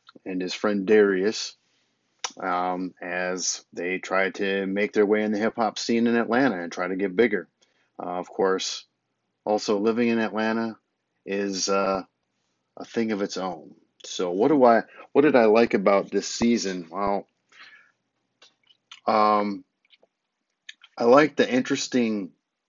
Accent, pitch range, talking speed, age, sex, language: American, 95-110 Hz, 145 wpm, 30-49, male, English